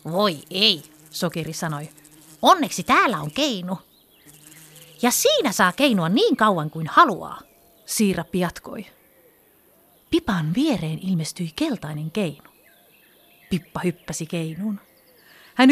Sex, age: female, 30-49